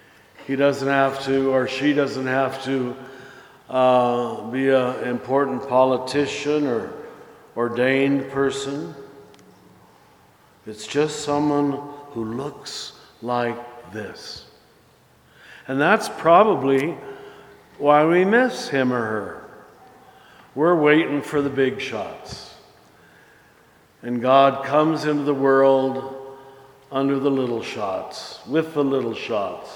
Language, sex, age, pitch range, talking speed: English, male, 60-79, 130-150 Hz, 105 wpm